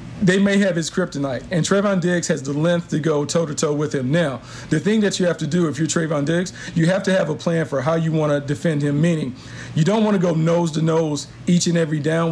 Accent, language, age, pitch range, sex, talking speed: American, English, 50-69, 150-180 Hz, male, 255 wpm